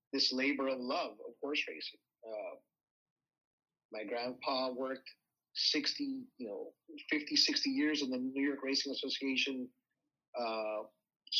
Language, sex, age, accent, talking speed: English, male, 30-49, American, 125 wpm